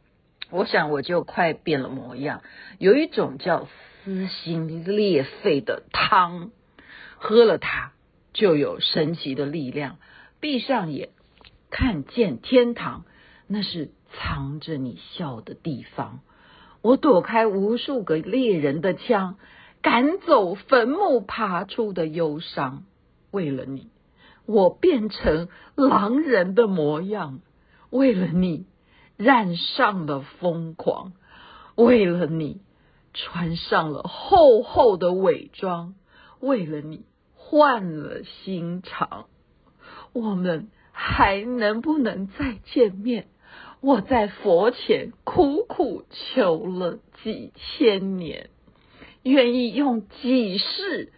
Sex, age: female, 50-69